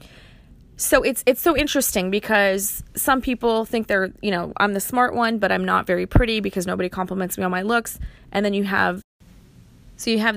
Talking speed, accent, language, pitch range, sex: 205 wpm, American, English, 180-220 Hz, female